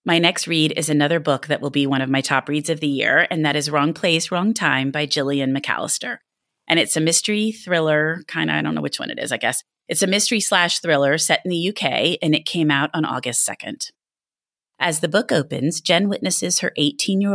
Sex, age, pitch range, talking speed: female, 30-49, 150-190 Hz, 235 wpm